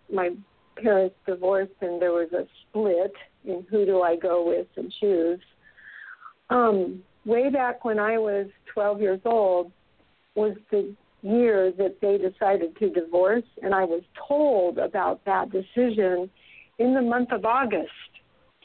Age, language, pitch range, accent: 50-69, English, 185-225 Hz, American